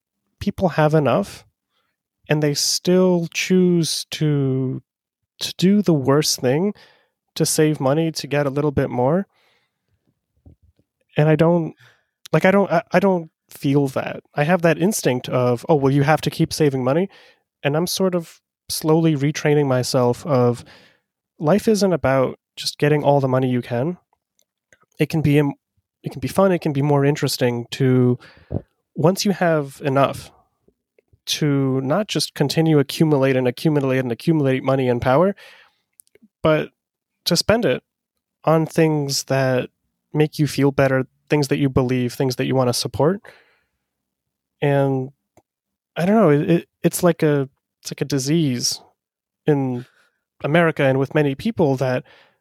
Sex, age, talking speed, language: male, 30-49, 150 wpm, English